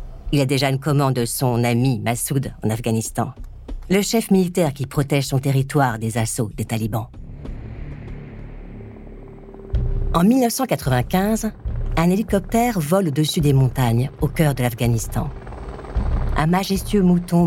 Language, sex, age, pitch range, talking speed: French, female, 50-69, 115-160 Hz, 125 wpm